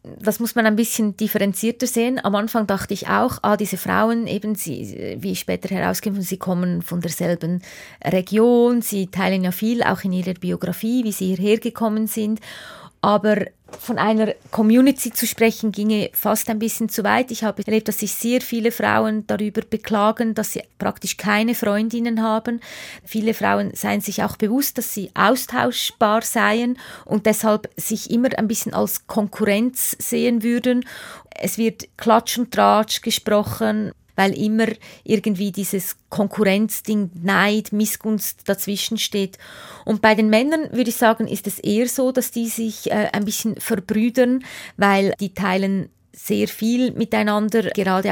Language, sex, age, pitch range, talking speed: German, female, 20-39, 195-225 Hz, 155 wpm